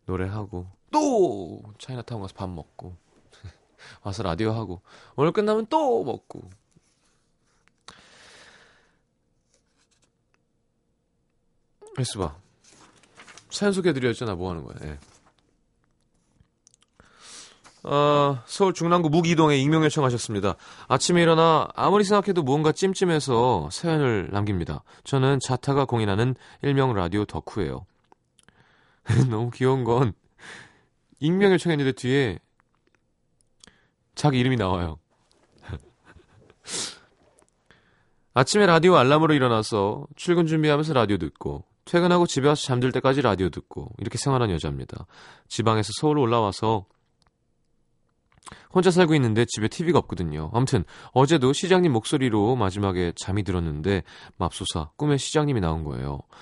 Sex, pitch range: male, 100-155 Hz